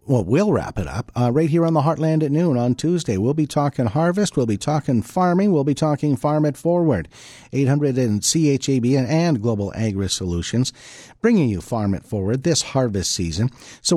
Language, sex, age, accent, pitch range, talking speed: English, male, 50-69, American, 105-155 Hz, 195 wpm